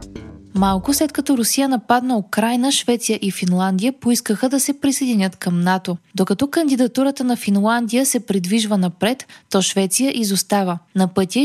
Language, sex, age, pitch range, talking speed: Bulgarian, female, 20-39, 195-255 Hz, 140 wpm